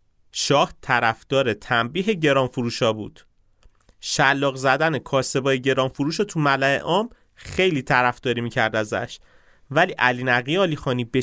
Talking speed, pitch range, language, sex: 105 wpm, 100-130 Hz, Persian, male